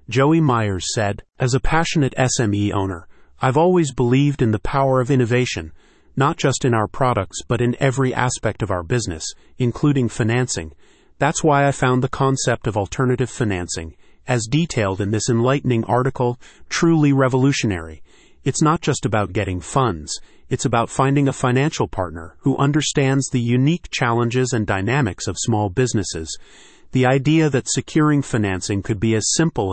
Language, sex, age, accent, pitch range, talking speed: English, male, 40-59, American, 110-135 Hz, 155 wpm